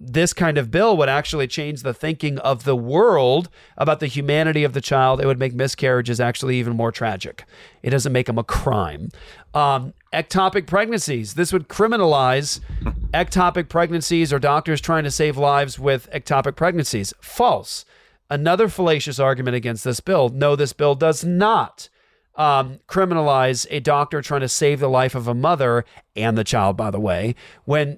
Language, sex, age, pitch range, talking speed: English, male, 40-59, 130-160 Hz, 170 wpm